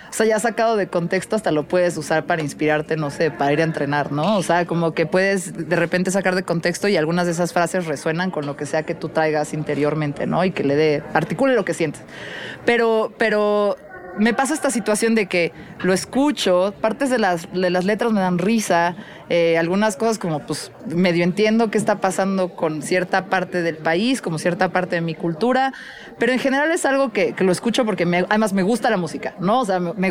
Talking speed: 225 wpm